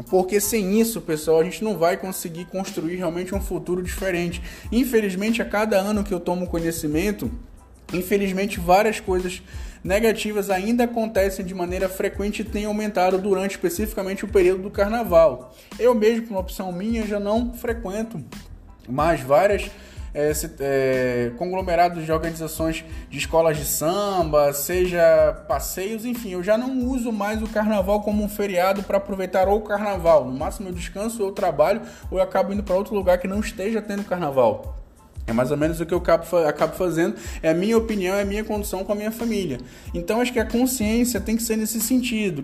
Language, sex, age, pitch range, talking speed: Portuguese, male, 20-39, 175-215 Hz, 180 wpm